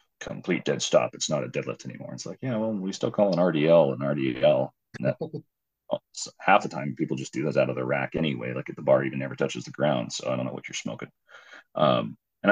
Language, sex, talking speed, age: English, male, 260 wpm, 30-49